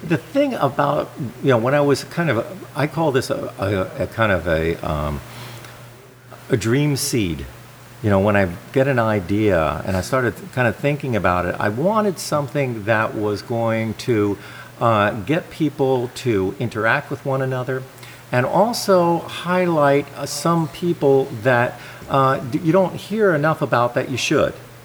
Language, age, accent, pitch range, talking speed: English, 50-69, American, 110-145 Hz, 165 wpm